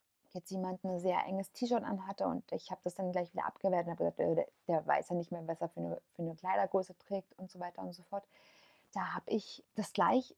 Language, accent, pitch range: German, German, 190-245 Hz